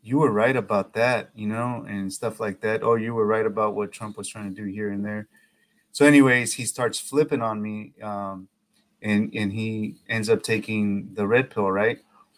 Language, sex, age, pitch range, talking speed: English, male, 30-49, 105-130 Hz, 210 wpm